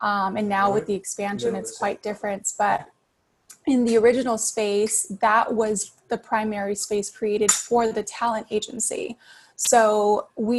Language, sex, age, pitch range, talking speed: English, female, 20-39, 205-230 Hz, 145 wpm